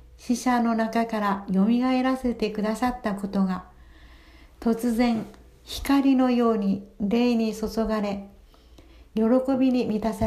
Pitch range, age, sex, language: 200-245 Hz, 60-79, female, Japanese